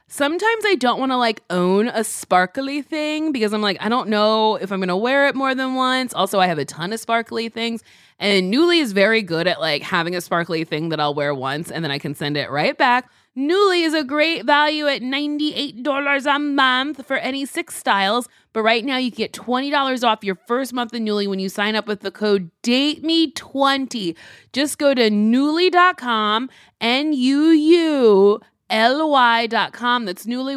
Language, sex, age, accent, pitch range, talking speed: English, female, 20-39, American, 215-300 Hz, 200 wpm